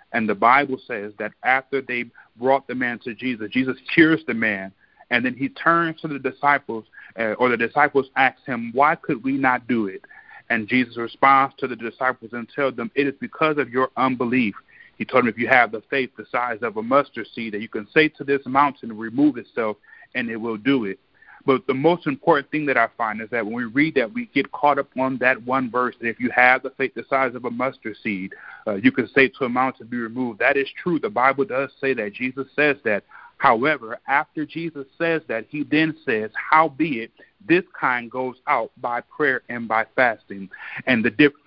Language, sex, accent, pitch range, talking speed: English, male, American, 125-150 Hz, 225 wpm